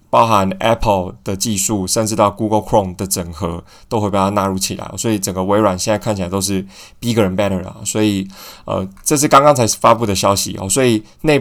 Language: Chinese